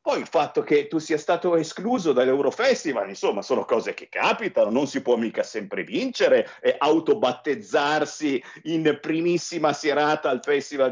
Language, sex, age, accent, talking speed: Italian, male, 50-69, native, 150 wpm